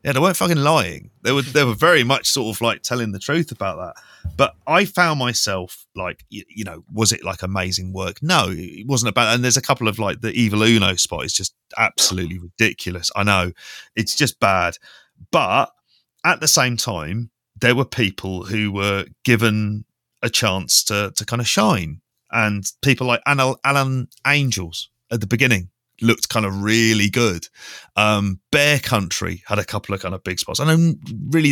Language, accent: English, British